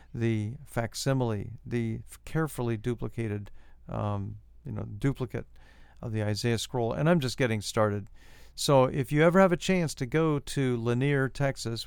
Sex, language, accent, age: male, English, American, 50-69